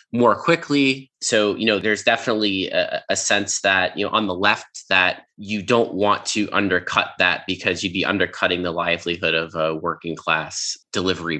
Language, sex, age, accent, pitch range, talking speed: English, male, 20-39, American, 95-115 Hz, 180 wpm